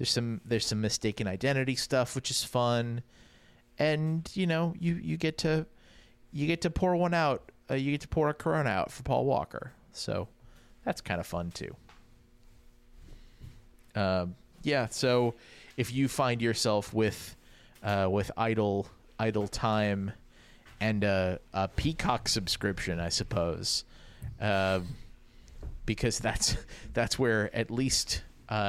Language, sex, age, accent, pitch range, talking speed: English, male, 30-49, American, 95-120 Hz, 140 wpm